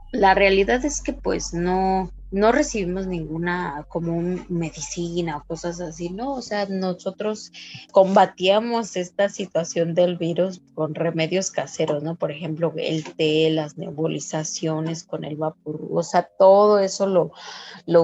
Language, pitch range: English, 160-195 Hz